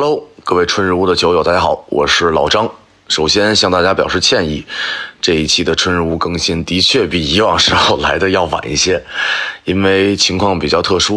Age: 30-49